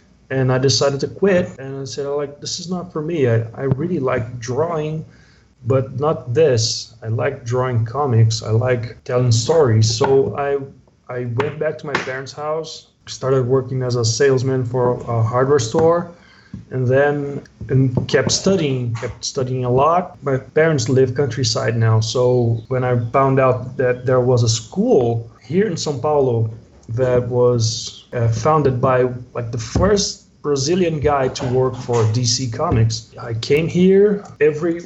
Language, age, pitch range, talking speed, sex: English, 20-39, 120-145 Hz, 165 wpm, male